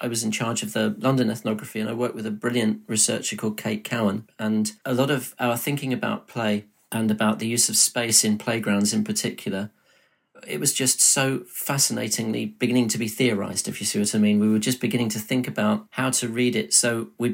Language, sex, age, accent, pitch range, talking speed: English, male, 40-59, British, 110-125 Hz, 220 wpm